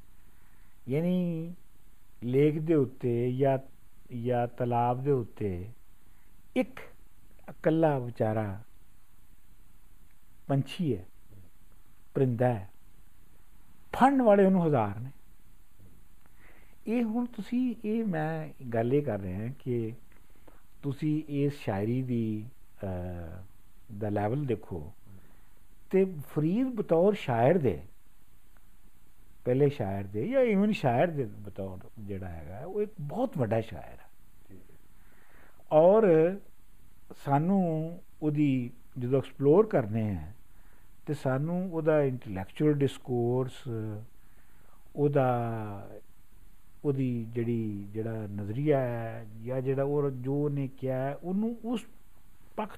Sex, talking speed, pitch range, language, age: male, 100 wpm, 100-150 Hz, Punjabi, 50-69